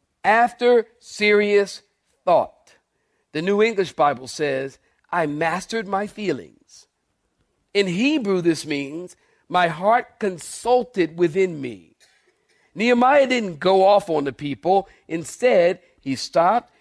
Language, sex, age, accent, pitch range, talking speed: English, male, 50-69, American, 155-215 Hz, 110 wpm